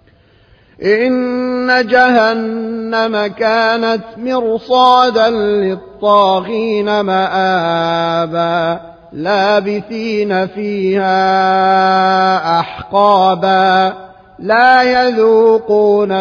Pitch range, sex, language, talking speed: 185-225 Hz, male, Arabic, 40 wpm